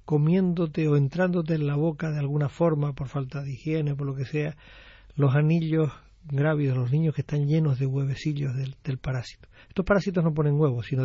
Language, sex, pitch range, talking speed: Spanish, male, 130-165 Hz, 195 wpm